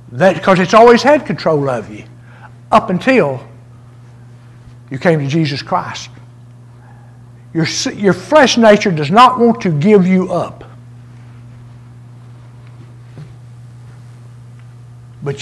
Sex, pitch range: male, 120-170 Hz